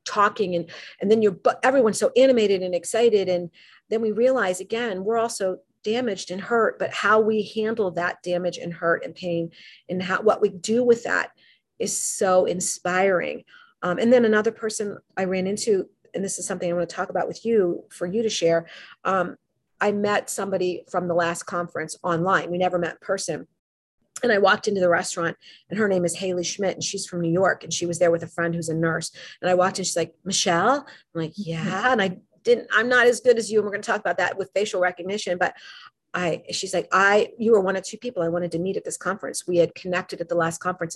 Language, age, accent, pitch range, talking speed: English, 40-59, American, 175-220 Hz, 230 wpm